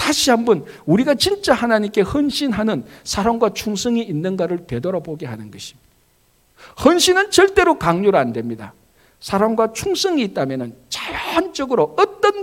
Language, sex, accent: Korean, male, native